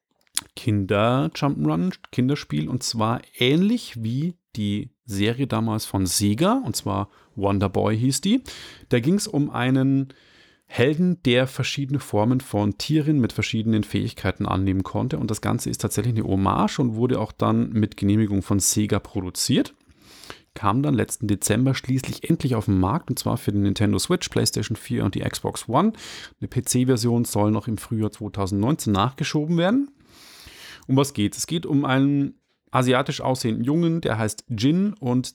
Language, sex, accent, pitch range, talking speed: German, male, German, 105-140 Hz, 160 wpm